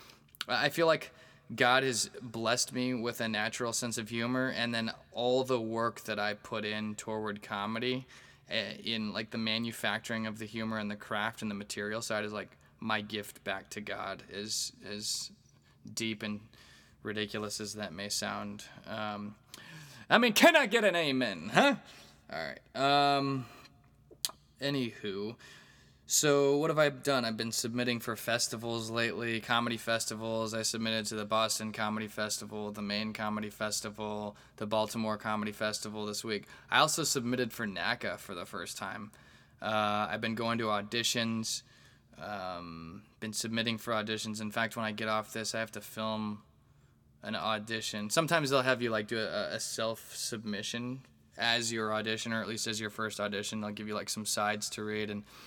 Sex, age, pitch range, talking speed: male, 20-39, 105-120 Hz, 170 wpm